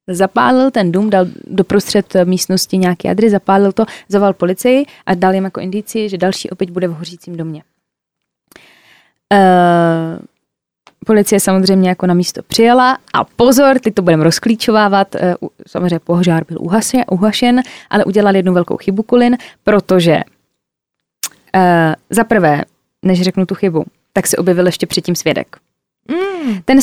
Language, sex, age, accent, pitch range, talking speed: Czech, female, 20-39, native, 185-225 Hz, 145 wpm